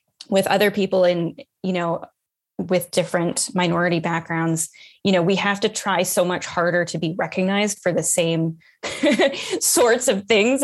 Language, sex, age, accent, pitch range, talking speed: English, female, 10-29, American, 165-195 Hz, 160 wpm